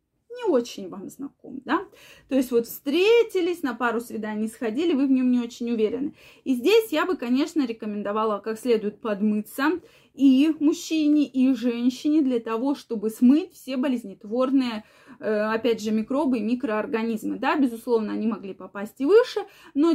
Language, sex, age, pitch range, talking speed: Russian, female, 20-39, 225-280 Hz, 155 wpm